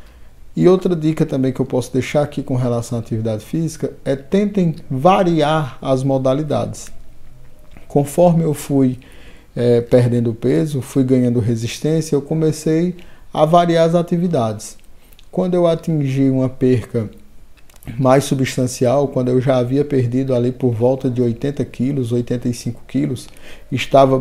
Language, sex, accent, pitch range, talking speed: Portuguese, male, Brazilian, 125-150 Hz, 135 wpm